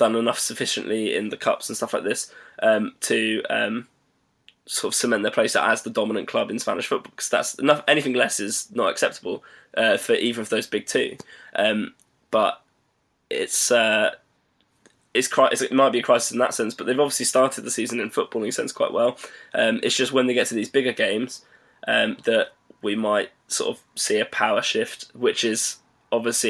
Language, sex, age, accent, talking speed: English, male, 10-29, British, 200 wpm